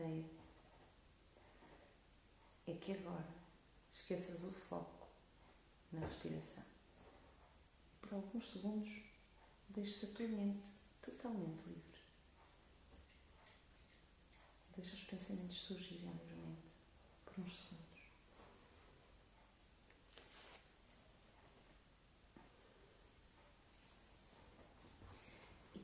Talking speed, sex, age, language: 60 wpm, female, 40-59, Portuguese